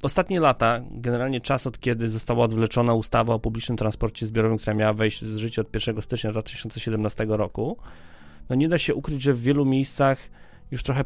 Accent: native